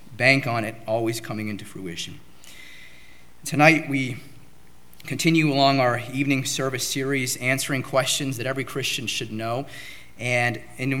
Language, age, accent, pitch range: English, 30-49, American, 125-160 Hz